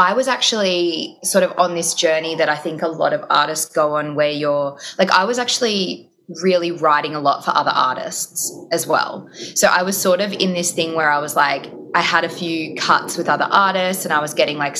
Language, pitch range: English, 150-180 Hz